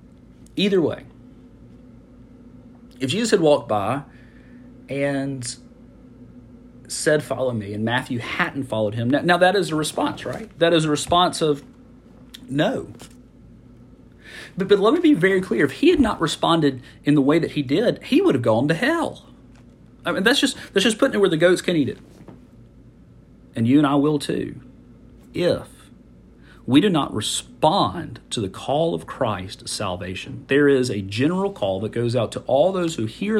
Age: 40-59